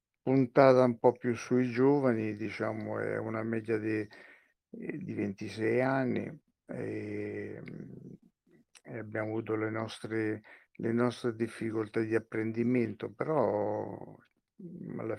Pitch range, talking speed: 110-120 Hz, 105 wpm